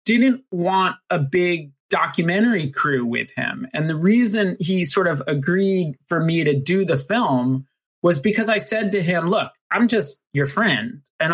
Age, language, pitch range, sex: 30-49, English, 140-190 Hz, male